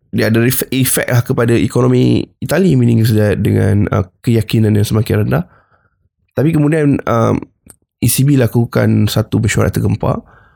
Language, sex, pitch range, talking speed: Malay, male, 105-120 Hz, 125 wpm